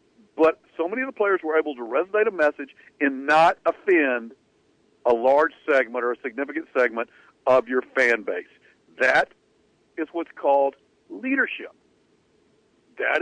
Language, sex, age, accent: English, male, 50-69, American